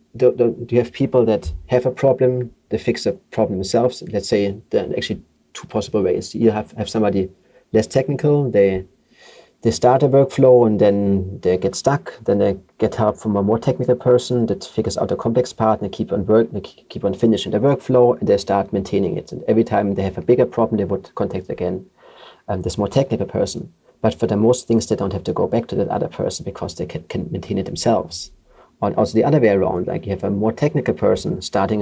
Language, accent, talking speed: English, German, 230 wpm